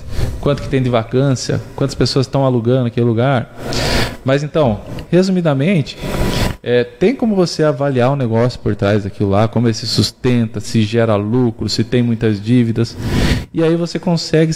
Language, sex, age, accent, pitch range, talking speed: Portuguese, male, 20-39, Brazilian, 115-145 Hz, 170 wpm